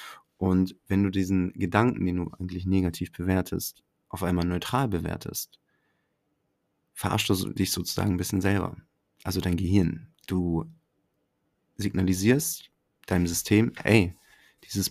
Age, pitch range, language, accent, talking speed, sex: 30-49, 90-100 Hz, German, German, 120 wpm, male